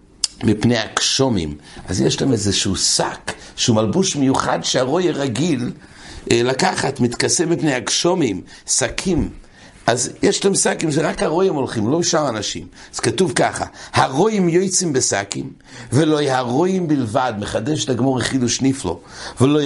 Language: English